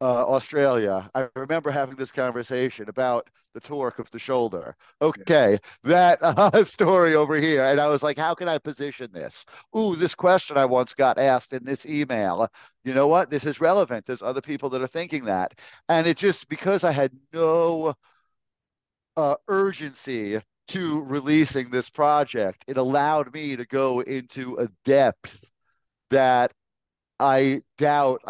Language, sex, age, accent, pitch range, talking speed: English, male, 50-69, American, 130-170 Hz, 160 wpm